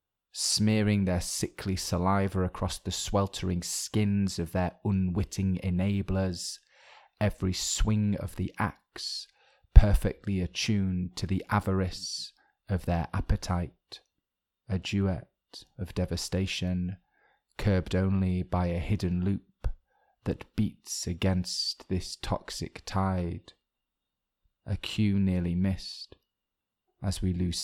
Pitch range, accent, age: 90-100 Hz, British, 30-49